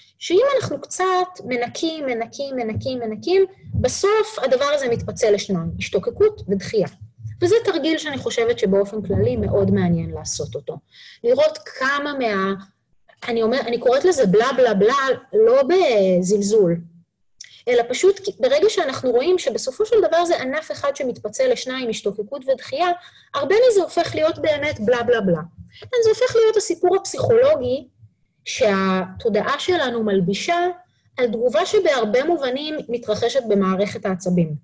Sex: female